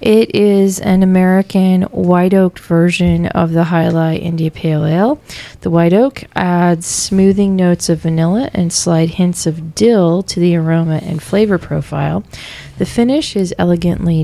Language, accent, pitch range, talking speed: English, American, 160-190 Hz, 150 wpm